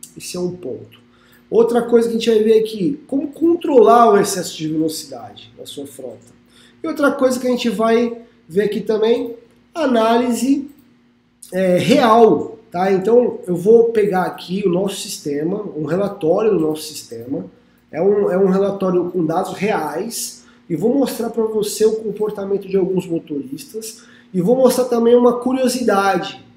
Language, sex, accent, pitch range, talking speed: Portuguese, male, Brazilian, 165-230 Hz, 165 wpm